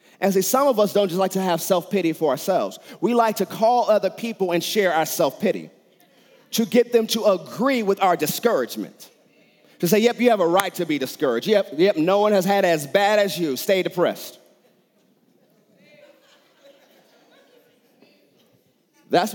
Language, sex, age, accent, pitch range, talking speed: English, male, 30-49, American, 175-225 Hz, 165 wpm